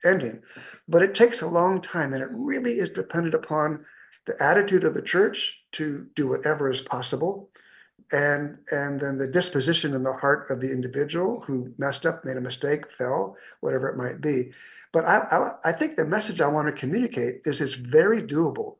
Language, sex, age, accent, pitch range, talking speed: English, male, 50-69, American, 130-165 Hz, 190 wpm